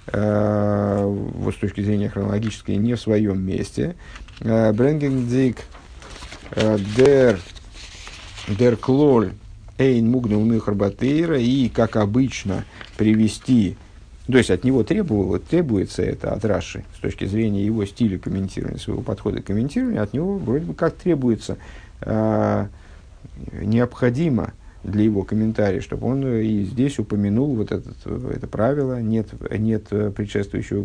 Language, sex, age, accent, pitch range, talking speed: Russian, male, 50-69, native, 100-125 Hz, 110 wpm